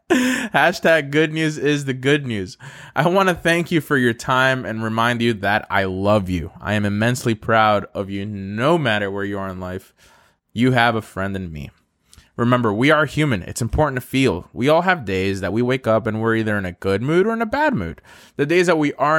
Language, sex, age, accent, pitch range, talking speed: English, male, 20-39, American, 110-150 Hz, 230 wpm